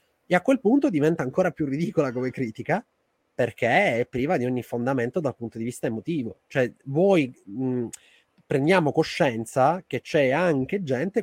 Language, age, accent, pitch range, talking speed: Italian, 30-49, native, 125-155 Hz, 160 wpm